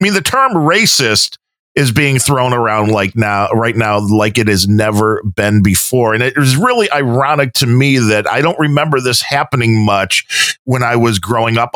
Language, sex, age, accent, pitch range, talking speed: English, male, 40-59, American, 125-165 Hz, 195 wpm